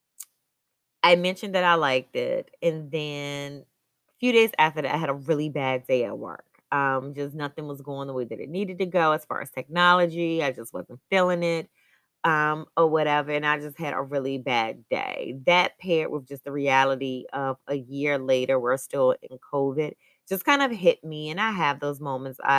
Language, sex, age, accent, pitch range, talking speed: English, female, 20-39, American, 140-185 Hz, 205 wpm